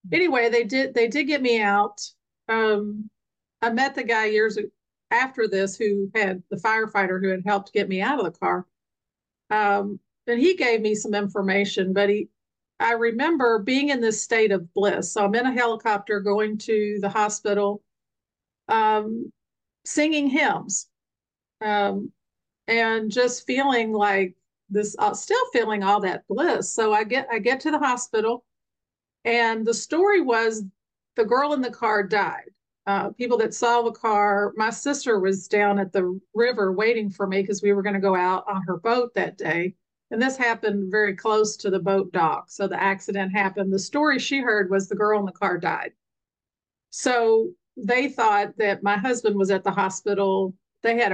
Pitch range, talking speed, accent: 200-235 Hz, 175 wpm, American